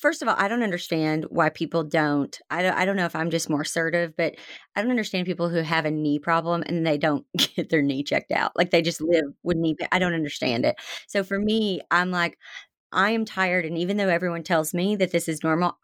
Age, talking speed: 30-49, 250 wpm